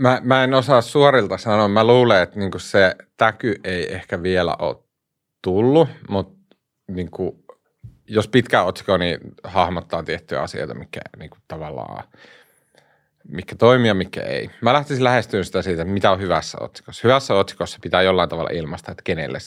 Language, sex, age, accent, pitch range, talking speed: Finnish, male, 30-49, native, 100-130 Hz, 135 wpm